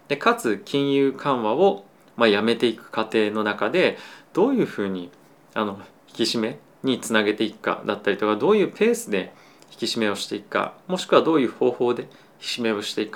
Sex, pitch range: male, 105-160 Hz